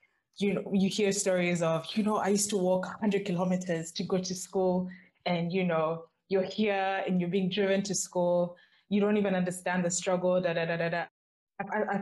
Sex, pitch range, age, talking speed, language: female, 165-195 Hz, 20-39, 210 wpm, English